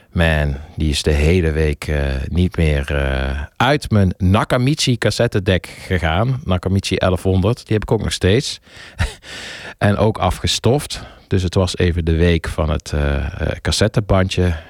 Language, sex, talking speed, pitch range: Dutch, male, 145 wpm, 80-100 Hz